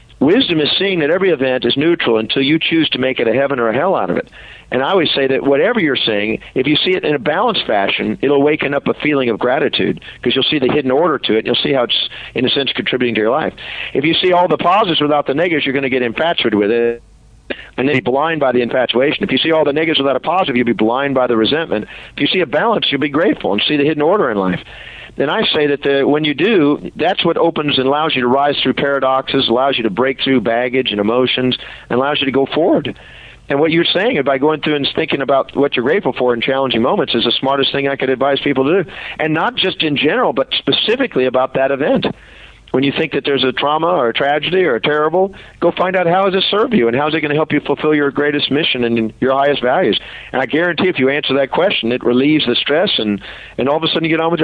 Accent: American